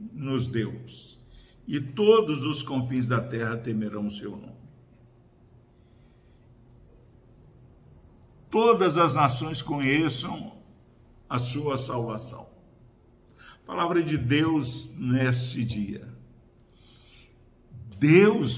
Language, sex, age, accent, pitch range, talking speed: Portuguese, male, 60-79, Brazilian, 125-170 Hz, 80 wpm